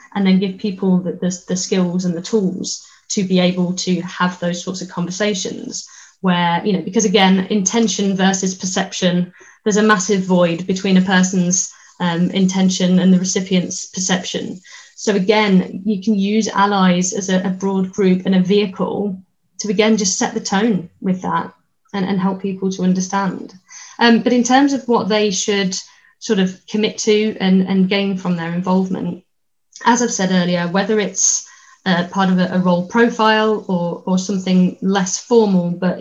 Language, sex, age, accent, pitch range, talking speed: English, female, 20-39, British, 180-210 Hz, 175 wpm